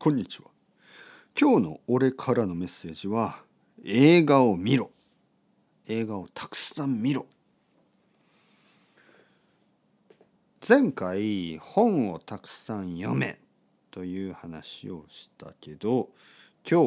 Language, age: Japanese, 50-69